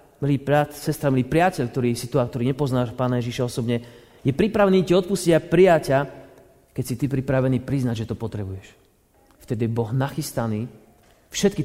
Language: Slovak